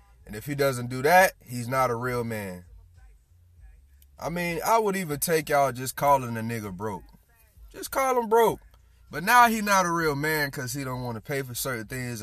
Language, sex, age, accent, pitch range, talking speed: English, male, 20-39, American, 90-140 Hz, 210 wpm